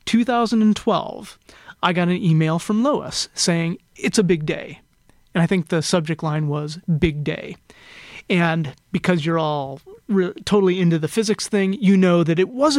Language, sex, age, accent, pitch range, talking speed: English, male, 30-49, American, 160-195 Hz, 165 wpm